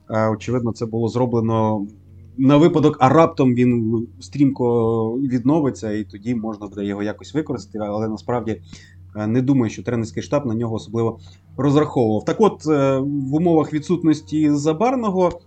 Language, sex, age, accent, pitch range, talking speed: Ukrainian, male, 30-49, native, 115-150 Hz, 135 wpm